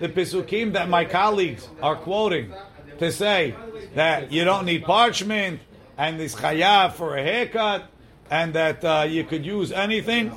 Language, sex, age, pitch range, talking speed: English, male, 50-69, 155-200 Hz, 155 wpm